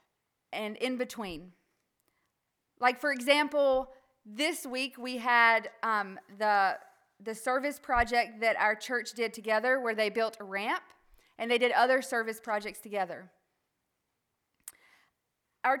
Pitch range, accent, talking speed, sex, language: 225-280 Hz, American, 125 wpm, female, English